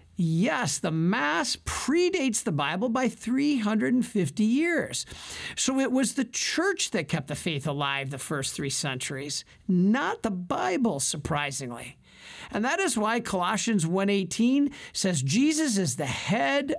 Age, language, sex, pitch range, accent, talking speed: 50-69, English, male, 150-230 Hz, American, 135 wpm